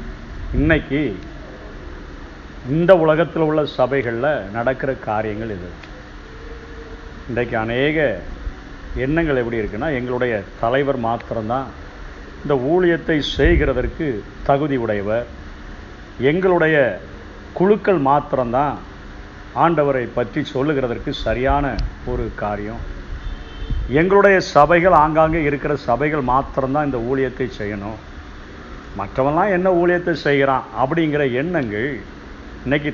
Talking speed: 85 wpm